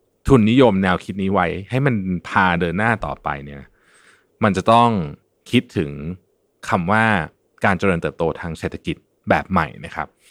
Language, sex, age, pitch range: Thai, male, 20-39, 85-125 Hz